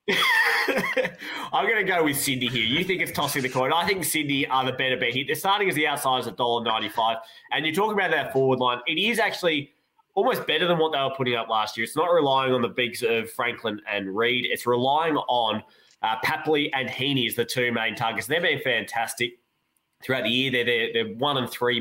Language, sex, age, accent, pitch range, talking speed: English, male, 20-39, Australian, 115-140 Hz, 225 wpm